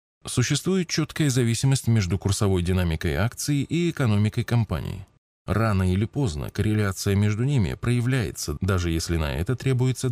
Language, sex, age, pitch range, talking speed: Russian, male, 20-39, 90-125 Hz, 130 wpm